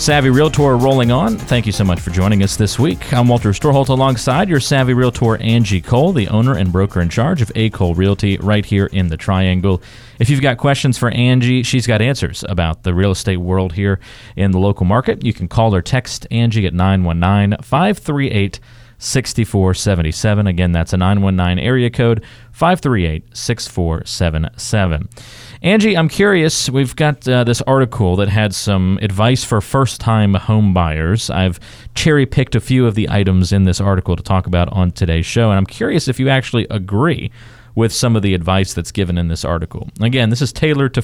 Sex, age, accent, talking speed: male, 40-59, American, 195 wpm